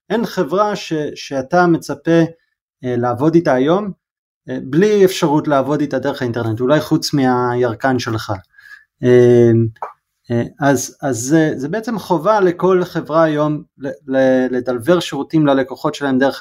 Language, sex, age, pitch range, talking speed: Hebrew, male, 30-49, 135-180 Hz, 130 wpm